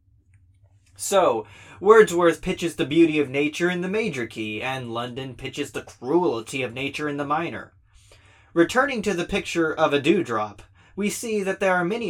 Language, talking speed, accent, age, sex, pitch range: English, 170 wpm, American, 30-49, male, 110-165 Hz